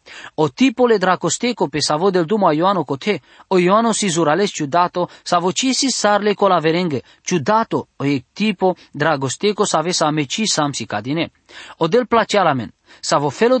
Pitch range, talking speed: 150-205 Hz, 180 wpm